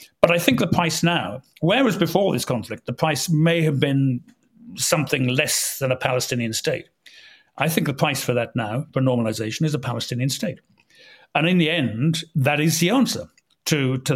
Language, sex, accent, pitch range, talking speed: English, male, British, 125-165 Hz, 185 wpm